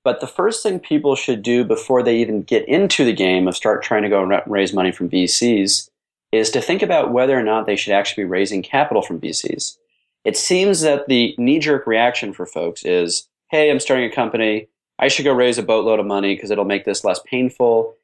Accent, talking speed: American, 225 wpm